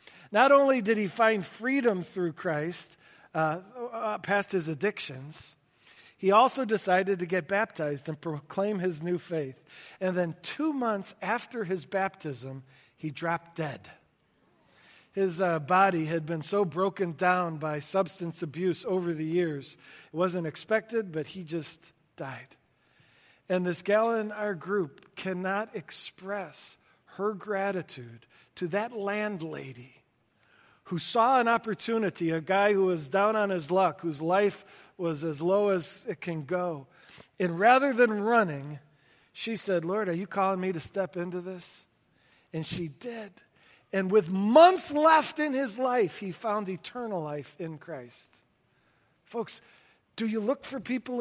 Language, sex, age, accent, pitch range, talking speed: English, male, 40-59, American, 170-215 Hz, 145 wpm